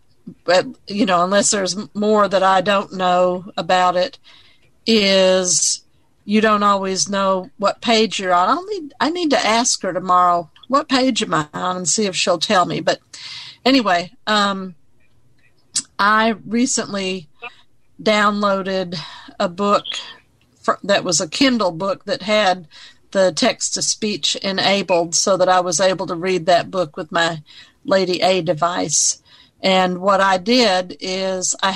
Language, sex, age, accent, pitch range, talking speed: English, female, 50-69, American, 180-215 Hz, 145 wpm